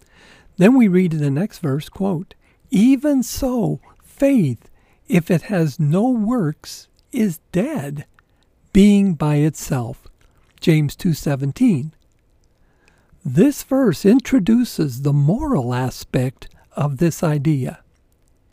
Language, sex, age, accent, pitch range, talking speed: English, male, 60-79, American, 140-215 Hz, 105 wpm